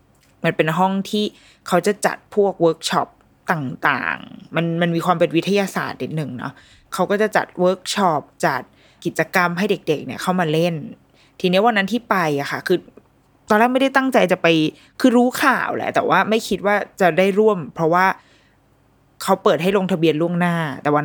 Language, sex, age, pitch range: Thai, female, 20-39, 165-210 Hz